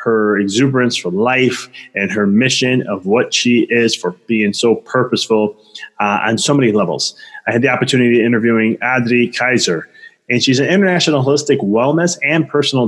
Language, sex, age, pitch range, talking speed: English, male, 20-39, 110-140 Hz, 170 wpm